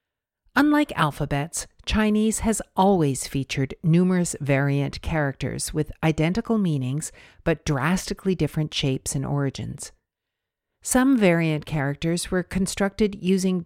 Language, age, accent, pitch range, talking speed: English, 50-69, American, 145-195 Hz, 105 wpm